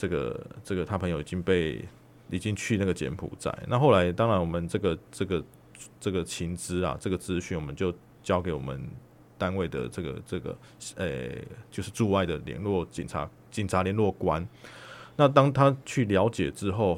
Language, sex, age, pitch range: Chinese, male, 20-39, 90-110 Hz